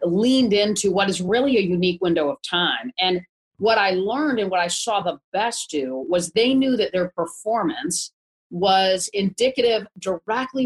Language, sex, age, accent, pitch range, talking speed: English, female, 40-59, American, 180-230 Hz, 170 wpm